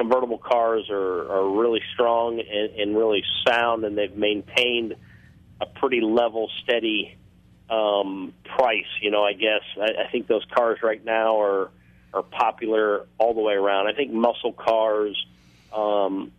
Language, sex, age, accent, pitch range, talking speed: English, male, 40-59, American, 100-125 Hz, 155 wpm